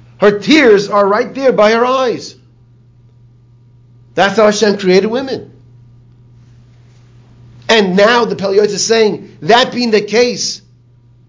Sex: male